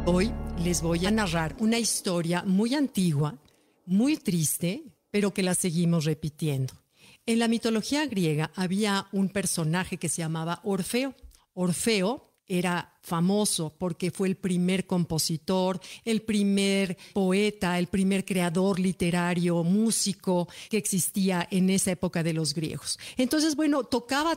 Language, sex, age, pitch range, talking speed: Spanish, female, 50-69, 175-215 Hz, 135 wpm